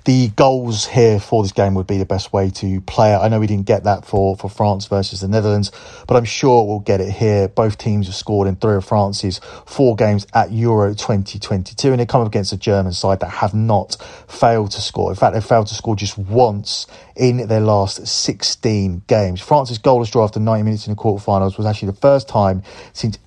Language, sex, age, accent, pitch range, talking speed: English, male, 30-49, British, 100-115 Hz, 225 wpm